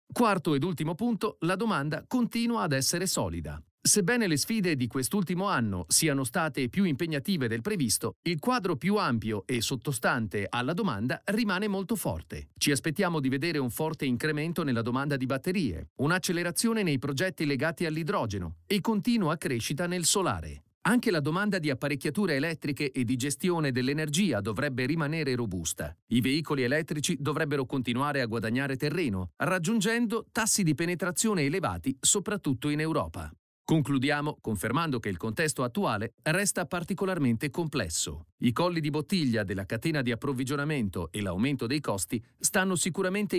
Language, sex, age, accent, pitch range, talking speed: Italian, male, 40-59, native, 125-180 Hz, 145 wpm